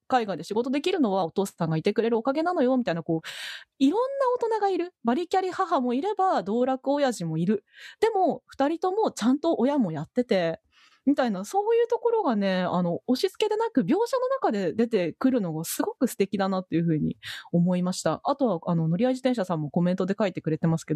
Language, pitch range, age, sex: Japanese, 200-300 Hz, 20-39, female